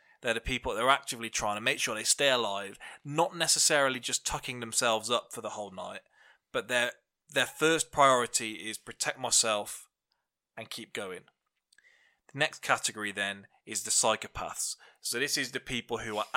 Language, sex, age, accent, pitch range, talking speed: English, male, 20-39, British, 110-135 Hz, 170 wpm